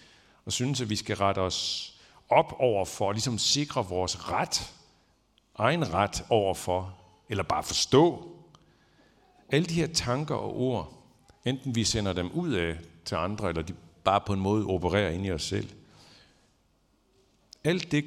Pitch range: 90-120 Hz